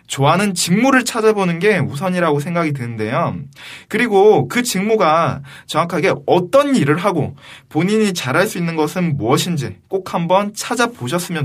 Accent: native